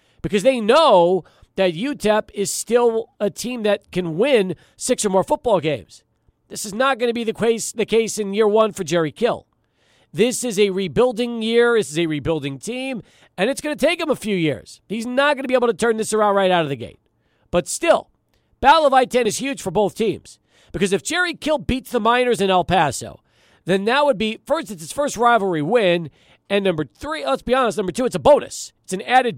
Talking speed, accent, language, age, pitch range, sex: 225 wpm, American, English, 40-59, 175-250 Hz, male